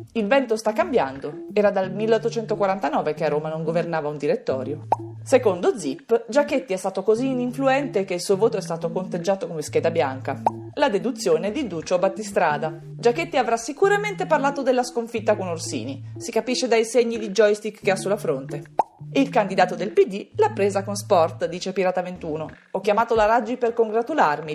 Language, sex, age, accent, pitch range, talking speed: Italian, female, 30-49, native, 165-250 Hz, 175 wpm